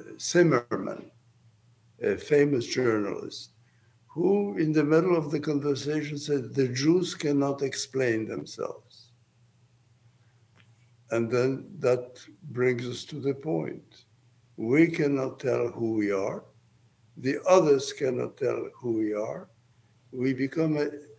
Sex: male